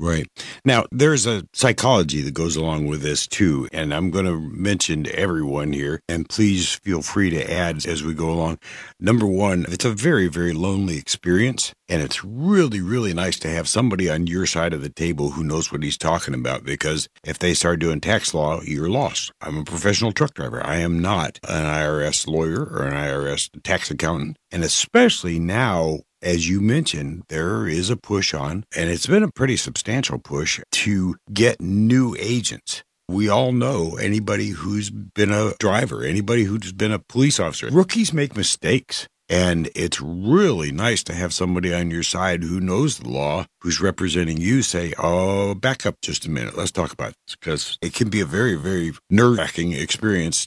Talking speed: 190 wpm